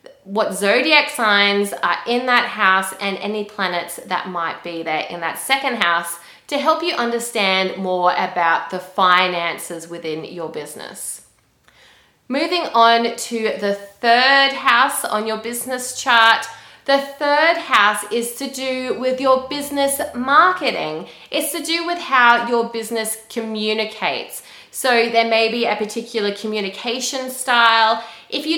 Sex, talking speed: female, 140 wpm